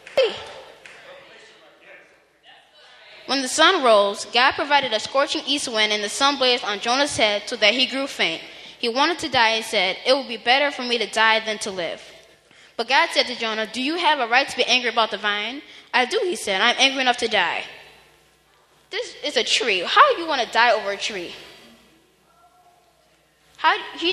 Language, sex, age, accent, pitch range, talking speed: English, female, 10-29, American, 230-310 Hz, 195 wpm